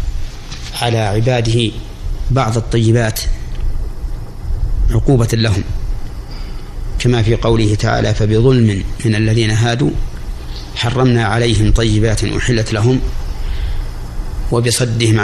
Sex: male